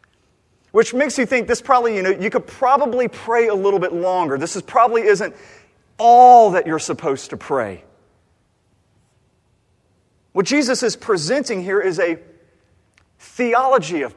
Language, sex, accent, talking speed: English, male, American, 150 wpm